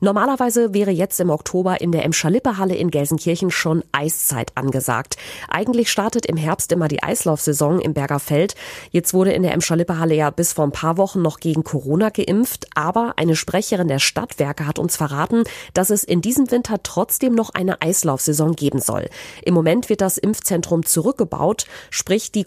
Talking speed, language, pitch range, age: 175 wpm, German, 155-200 Hz, 30-49